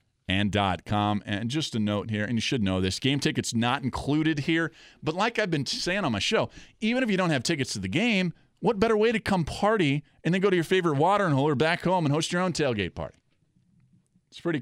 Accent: American